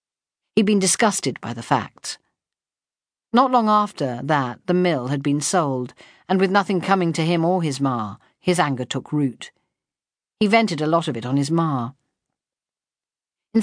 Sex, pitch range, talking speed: female, 135-185 Hz, 165 wpm